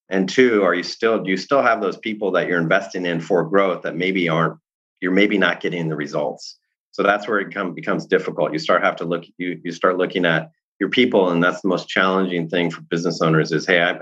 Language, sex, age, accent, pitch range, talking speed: English, male, 30-49, American, 85-100 Hz, 235 wpm